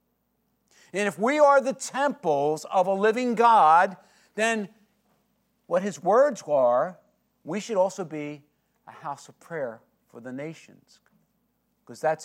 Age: 50-69